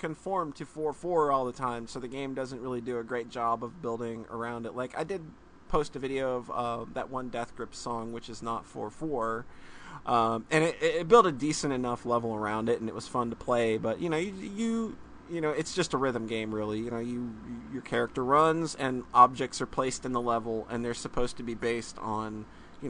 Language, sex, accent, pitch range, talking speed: English, male, American, 115-135 Hz, 230 wpm